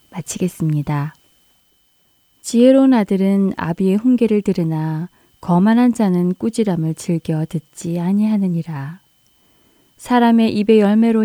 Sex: female